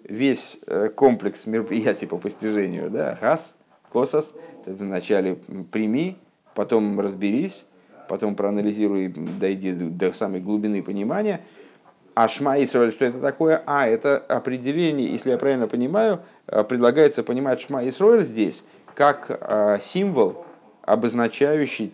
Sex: male